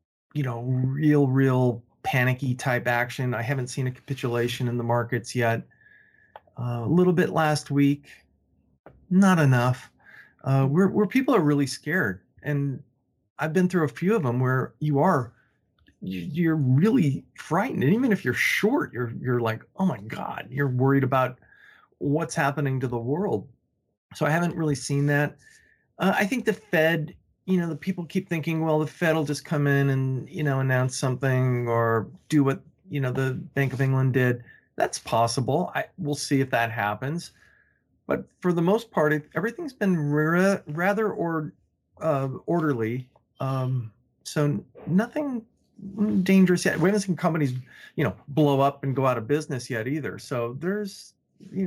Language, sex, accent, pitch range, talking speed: English, male, American, 130-170 Hz, 170 wpm